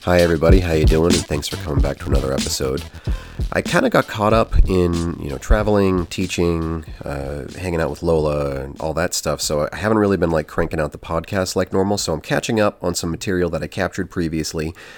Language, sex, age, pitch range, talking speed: English, male, 30-49, 80-100 Hz, 225 wpm